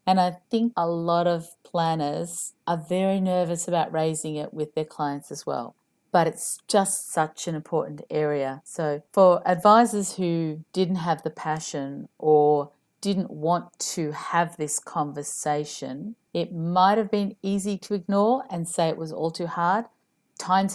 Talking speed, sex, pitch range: 160 wpm, female, 155-185 Hz